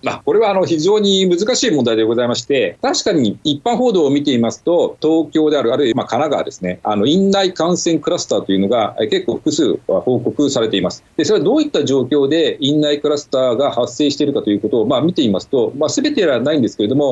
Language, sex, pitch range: Japanese, male, 130-200 Hz